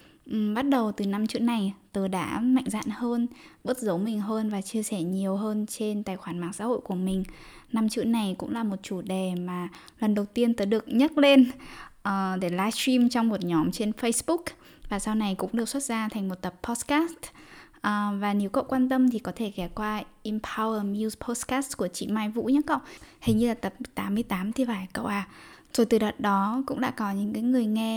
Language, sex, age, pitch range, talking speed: Vietnamese, female, 10-29, 195-235 Hz, 220 wpm